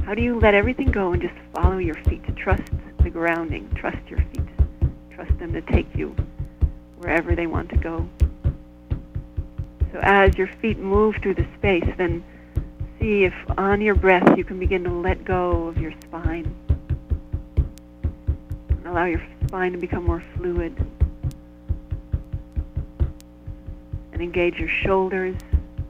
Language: English